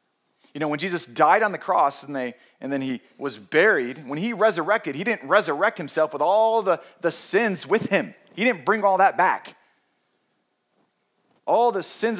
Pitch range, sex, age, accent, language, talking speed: 125-180 Hz, male, 30-49, American, English, 185 wpm